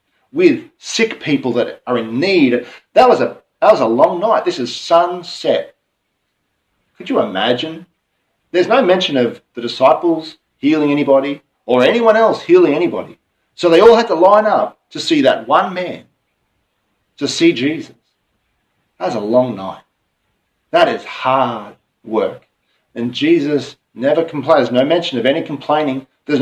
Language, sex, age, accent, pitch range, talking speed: English, male, 40-59, Australian, 130-190 Hz, 150 wpm